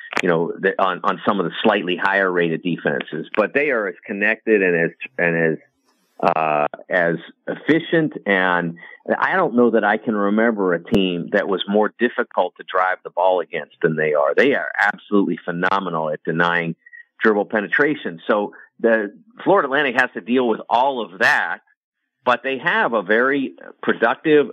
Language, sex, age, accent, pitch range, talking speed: English, male, 50-69, American, 100-125 Hz, 170 wpm